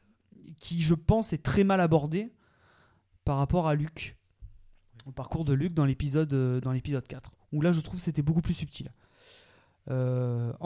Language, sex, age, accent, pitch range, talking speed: French, male, 20-39, French, 125-165 Hz, 170 wpm